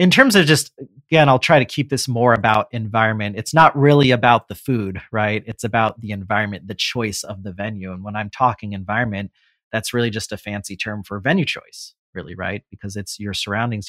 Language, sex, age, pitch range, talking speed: English, male, 30-49, 105-135 Hz, 210 wpm